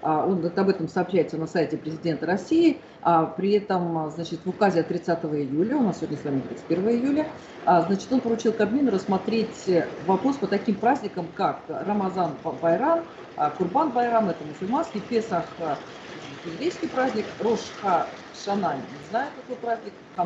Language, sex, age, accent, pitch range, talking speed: Russian, female, 40-59, native, 165-225 Hz, 145 wpm